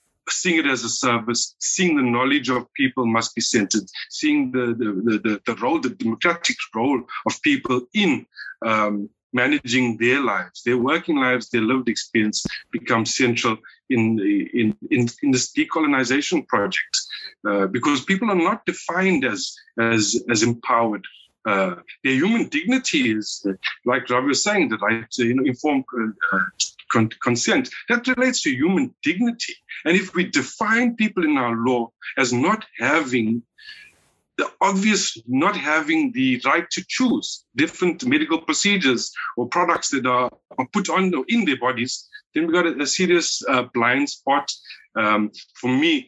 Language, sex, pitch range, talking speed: English, male, 115-195 Hz, 155 wpm